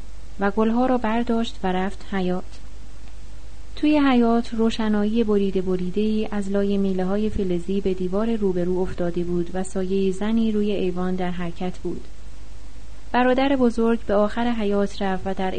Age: 30-49